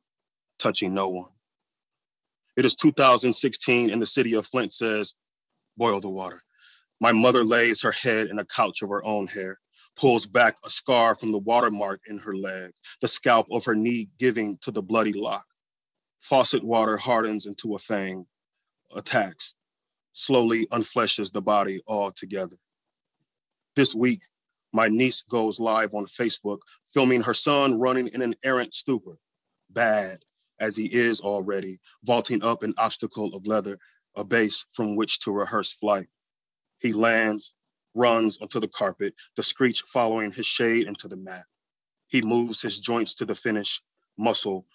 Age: 30-49